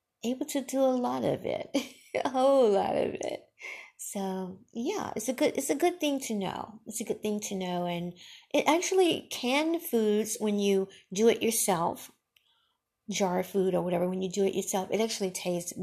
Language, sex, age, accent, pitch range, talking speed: English, female, 50-69, American, 180-240 Hz, 195 wpm